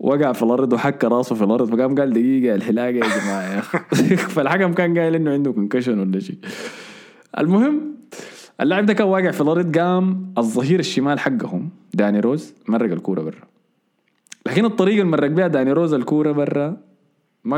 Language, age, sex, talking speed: Arabic, 20-39, male, 160 wpm